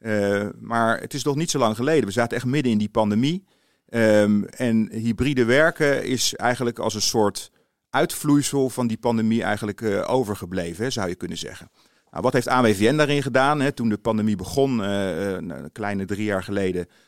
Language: Dutch